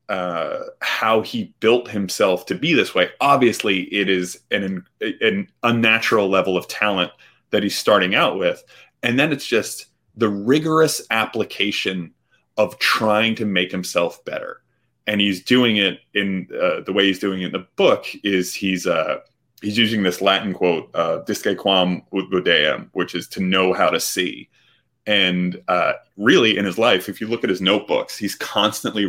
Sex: male